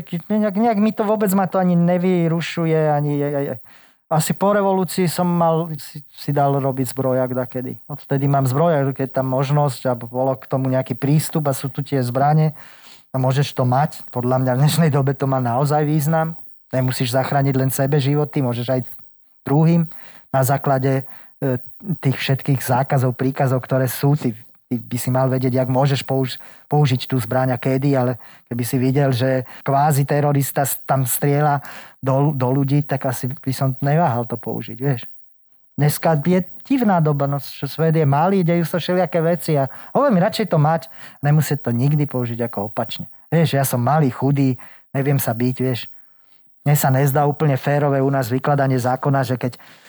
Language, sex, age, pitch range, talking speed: Slovak, male, 20-39, 130-155 Hz, 180 wpm